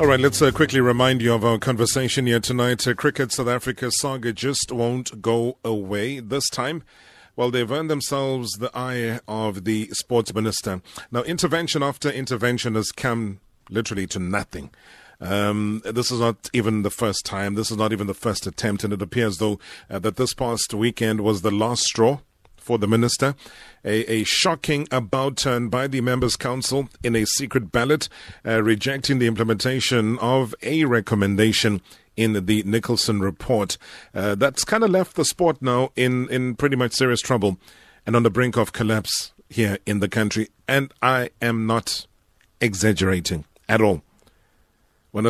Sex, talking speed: male, 170 wpm